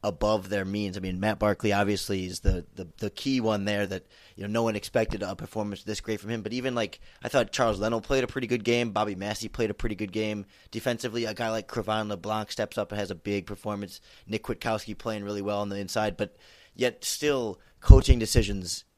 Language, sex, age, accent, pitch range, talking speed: English, male, 30-49, American, 100-115 Hz, 230 wpm